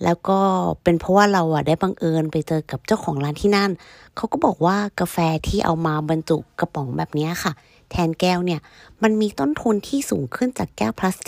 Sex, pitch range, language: female, 145-205 Hz, Thai